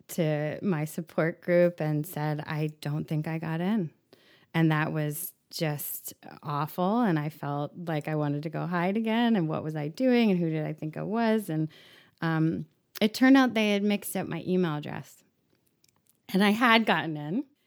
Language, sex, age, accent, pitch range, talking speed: English, female, 20-39, American, 160-210 Hz, 190 wpm